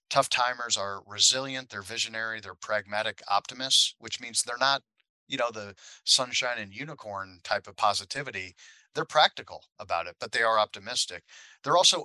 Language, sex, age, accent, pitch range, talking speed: English, male, 40-59, American, 105-135 Hz, 160 wpm